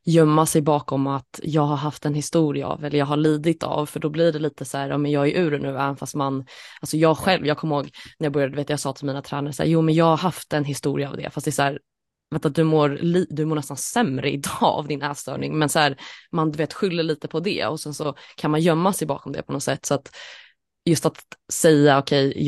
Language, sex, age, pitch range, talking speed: Swedish, female, 20-39, 140-160 Hz, 260 wpm